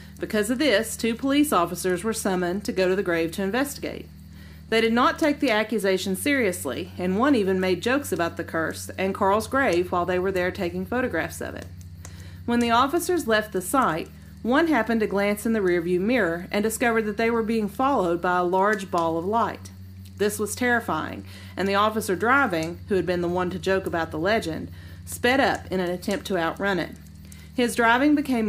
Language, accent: English, American